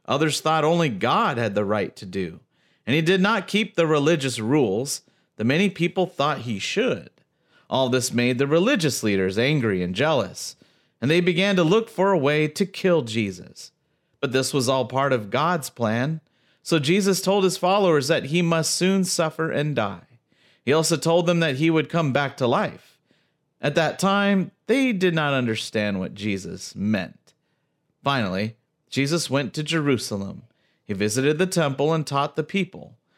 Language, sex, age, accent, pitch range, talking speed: English, male, 40-59, American, 125-180 Hz, 175 wpm